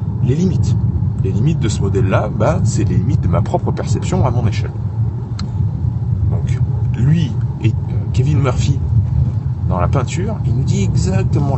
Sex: male